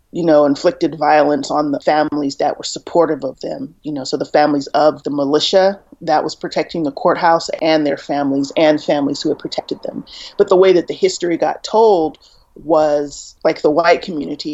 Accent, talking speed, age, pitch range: American, 195 wpm, 30-49, 150-185 Hz